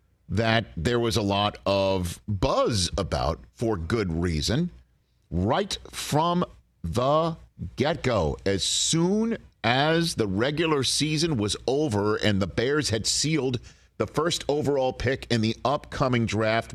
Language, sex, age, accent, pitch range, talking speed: English, male, 50-69, American, 100-135 Hz, 130 wpm